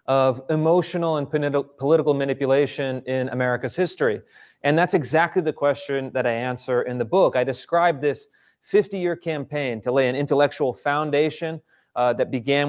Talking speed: 150 wpm